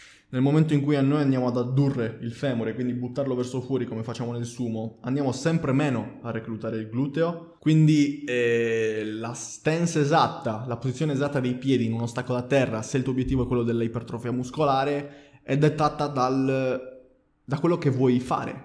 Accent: native